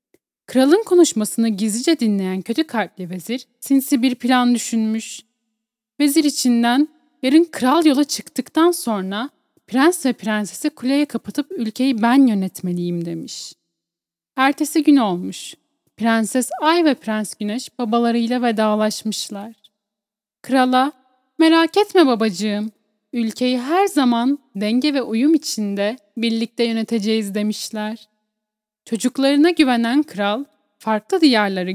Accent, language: native, Turkish